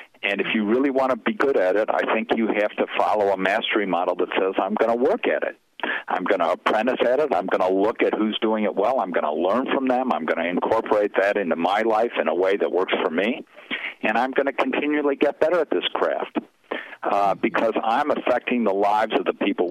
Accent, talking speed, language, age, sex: American, 250 wpm, English, 50-69, male